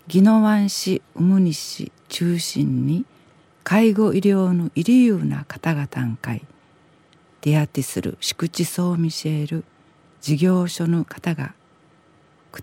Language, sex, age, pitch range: Japanese, female, 50-69, 150-185 Hz